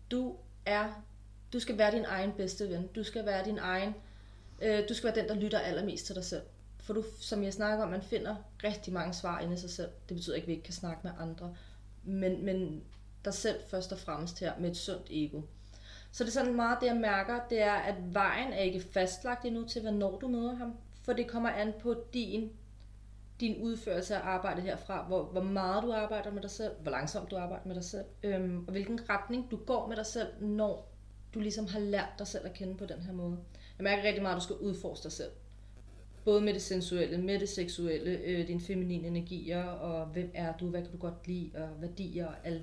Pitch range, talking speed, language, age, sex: 170-210 Hz, 225 wpm, Danish, 30-49, female